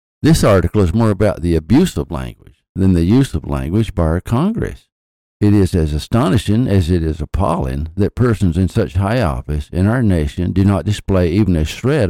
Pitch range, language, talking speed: 85-110 Hz, English, 200 wpm